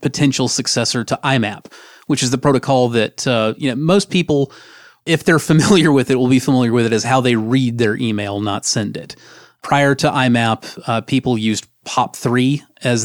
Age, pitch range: 30-49, 115-140 Hz